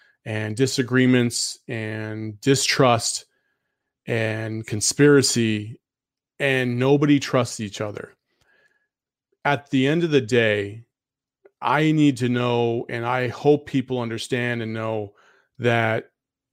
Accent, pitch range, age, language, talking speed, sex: American, 115-135 Hz, 30-49, English, 105 wpm, male